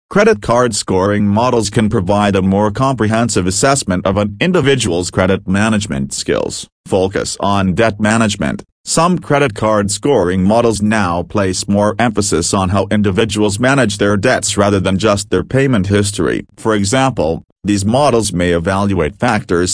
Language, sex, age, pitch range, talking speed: English, male, 40-59, 95-115 Hz, 145 wpm